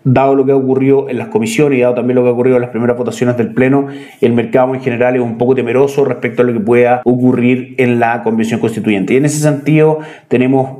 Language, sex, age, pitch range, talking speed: Spanish, male, 30-49, 120-135 Hz, 245 wpm